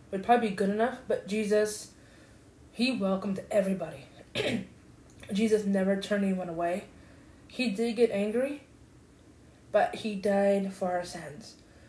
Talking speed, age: 125 wpm, 20-39